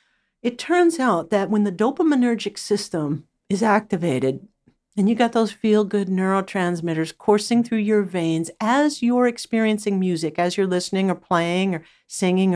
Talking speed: 150 wpm